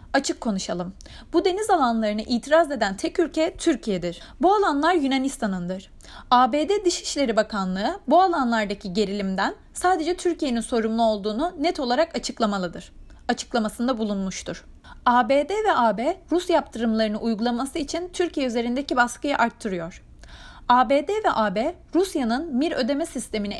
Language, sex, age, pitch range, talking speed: Turkish, female, 30-49, 220-315 Hz, 115 wpm